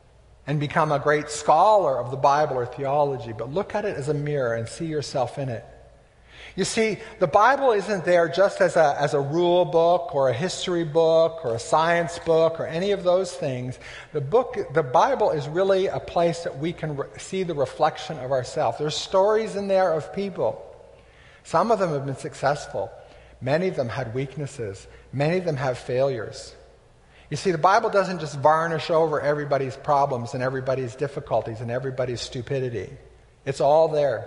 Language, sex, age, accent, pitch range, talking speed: English, male, 50-69, American, 135-180 Hz, 185 wpm